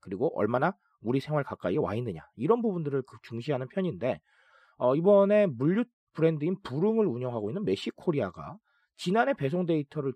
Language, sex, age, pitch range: Korean, male, 40-59, 120-190 Hz